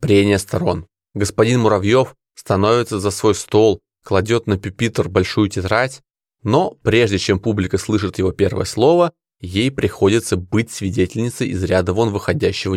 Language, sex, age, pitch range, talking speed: Russian, male, 20-39, 95-130 Hz, 135 wpm